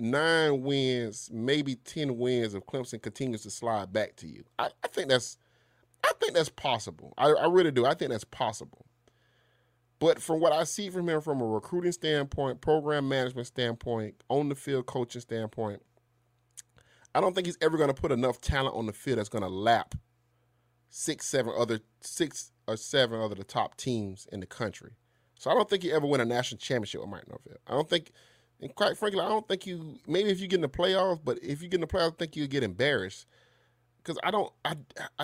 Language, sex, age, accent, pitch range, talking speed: English, male, 30-49, American, 120-155 Hz, 210 wpm